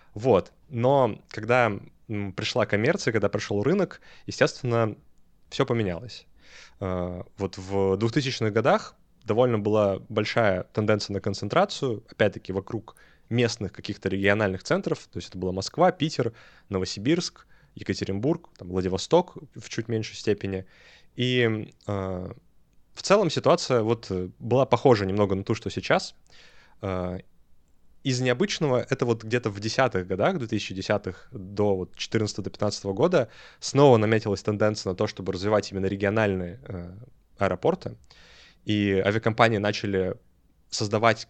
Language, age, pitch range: Russian, 20-39, 95-115 Hz